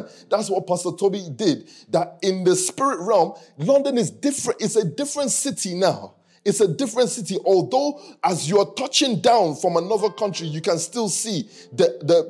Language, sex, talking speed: English, male, 175 wpm